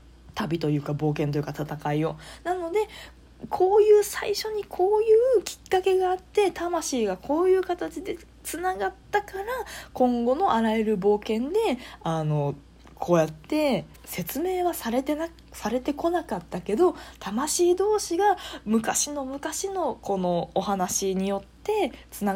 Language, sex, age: Japanese, female, 20-39